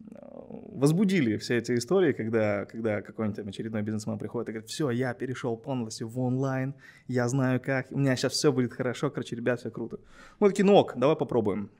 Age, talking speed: 20-39, 180 wpm